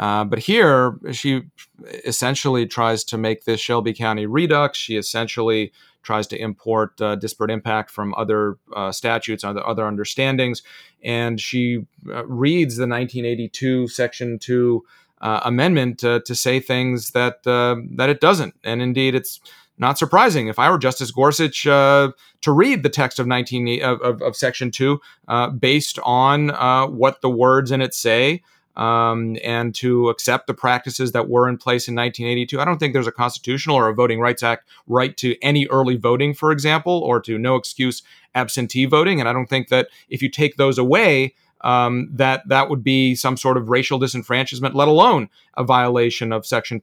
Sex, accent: male, American